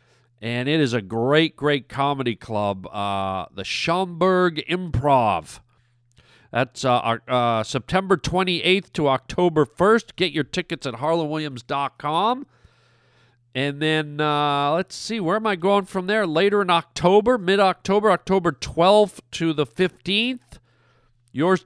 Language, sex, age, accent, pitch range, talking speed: English, male, 40-59, American, 135-190 Hz, 130 wpm